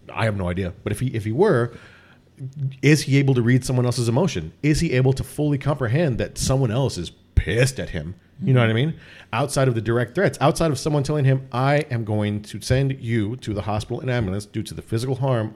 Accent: American